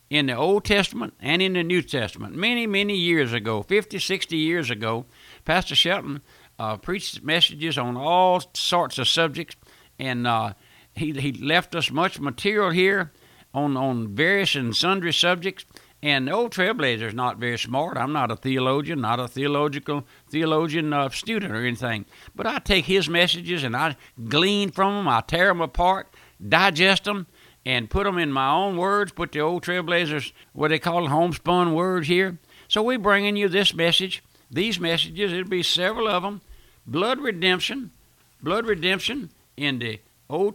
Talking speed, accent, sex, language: 175 wpm, American, male, English